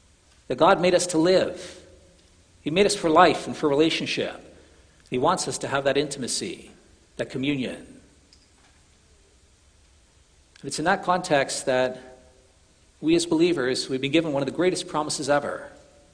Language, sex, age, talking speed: English, male, 60-79, 150 wpm